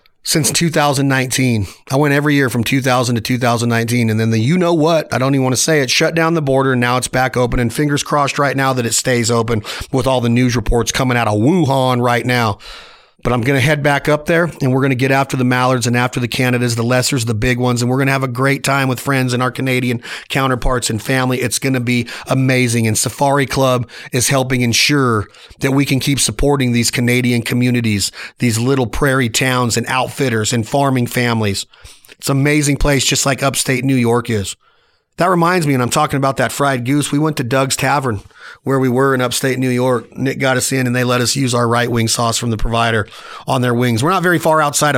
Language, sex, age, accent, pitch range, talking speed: English, male, 40-59, American, 120-140 Hz, 235 wpm